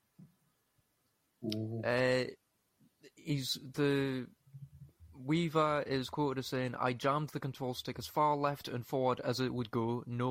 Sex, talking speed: male, 135 wpm